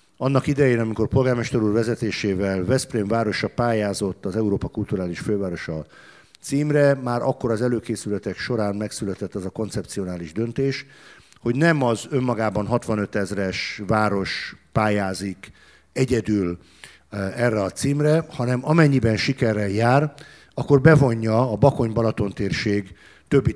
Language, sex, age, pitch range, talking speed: Hungarian, male, 50-69, 100-130 Hz, 120 wpm